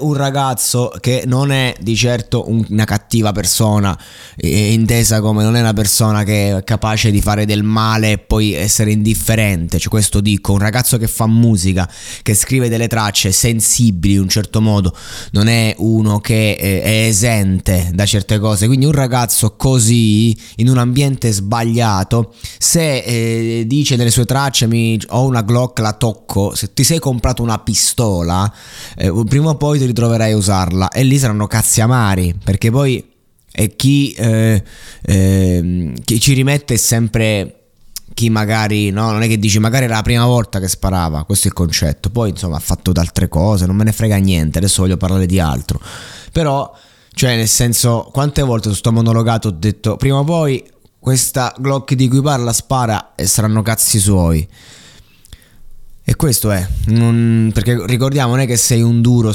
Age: 20-39